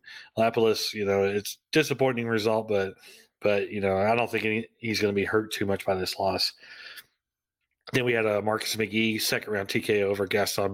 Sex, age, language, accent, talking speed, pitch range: male, 30-49, English, American, 200 wpm, 100-120 Hz